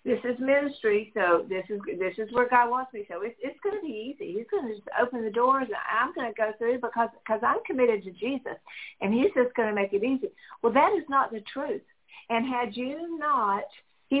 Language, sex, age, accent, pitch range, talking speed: English, female, 50-69, American, 205-260 Hz, 240 wpm